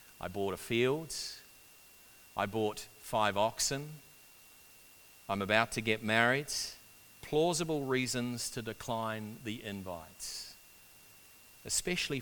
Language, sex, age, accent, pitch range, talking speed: English, male, 40-59, Australian, 105-135 Hz, 100 wpm